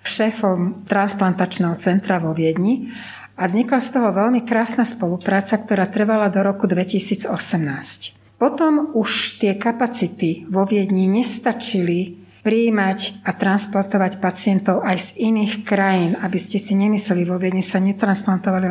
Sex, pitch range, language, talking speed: female, 180-215 Hz, Slovak, 130 wpm